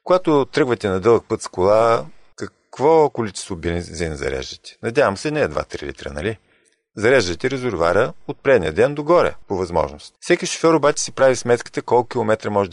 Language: Bulgarian